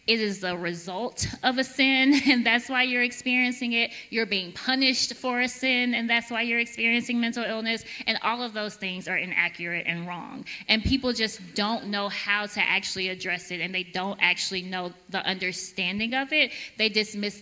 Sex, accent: female, American